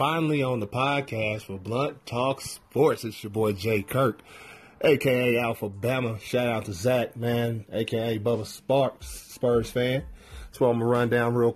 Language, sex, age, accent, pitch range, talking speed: English, male, 30-49, American, 105-125 Hz, 165 wpm